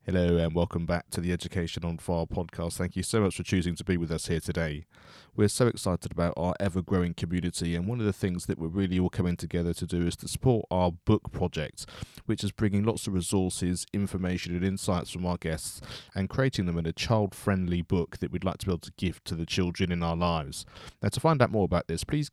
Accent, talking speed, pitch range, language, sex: British, 245 wpm, 90-105 Hz, English, male